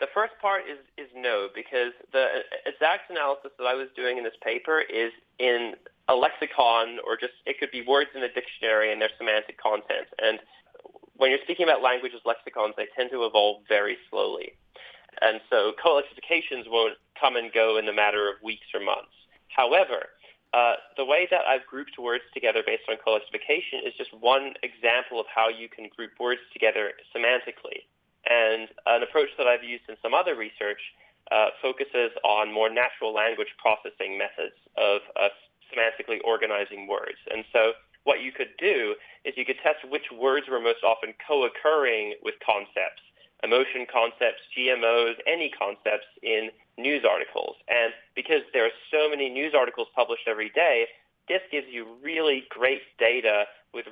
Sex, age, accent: male, 30-49, American